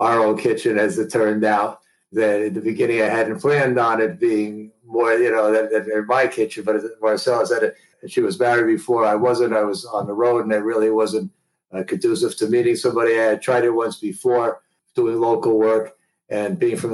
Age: 50-69